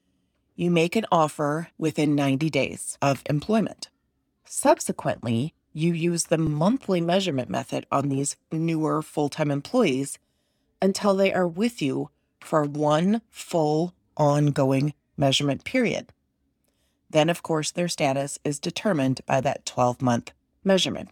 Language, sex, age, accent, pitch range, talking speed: English, female, 30-49, American, 140-185 Hz, 120 wpm